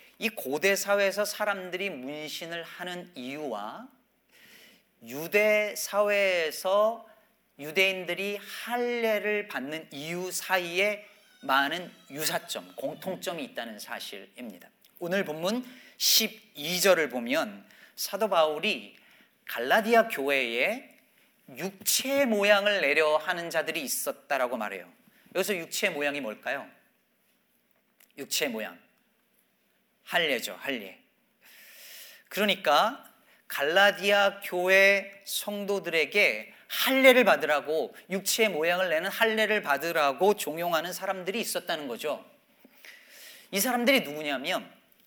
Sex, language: male, Korean